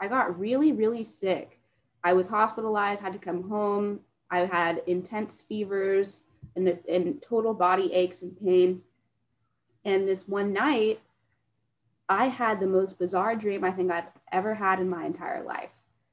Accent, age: American, 20-39